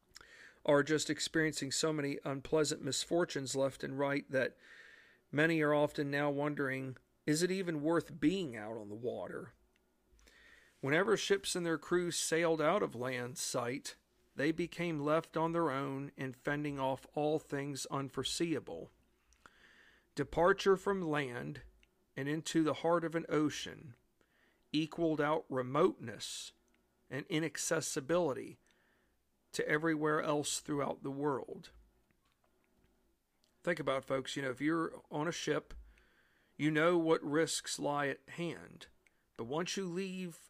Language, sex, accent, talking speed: English, male, American, 135 wpm